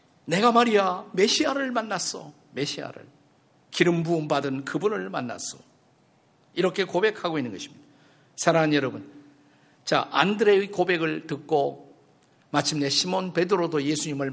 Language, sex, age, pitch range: Korean, male, 50-69, 145-195 Hz